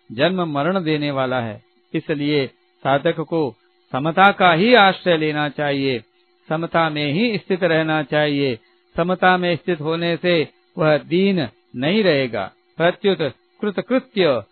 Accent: native